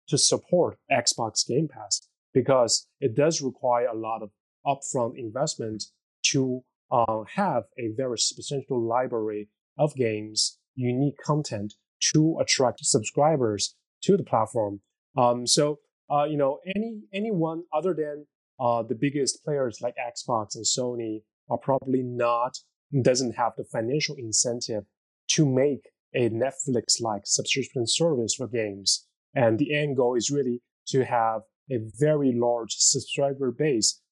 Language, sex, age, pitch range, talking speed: English, male, 20-39, 115-140 Hz, 135 wpm